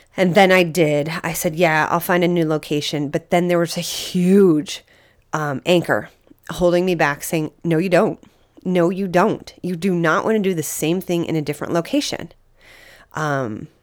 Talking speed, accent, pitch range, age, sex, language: 190 wpm, American, 160-205 Hz, 30-49, female, English